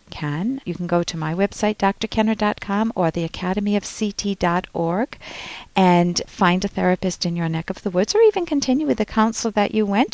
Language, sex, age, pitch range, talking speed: English, female, 50-69, 195-265 Hz, 180 wpm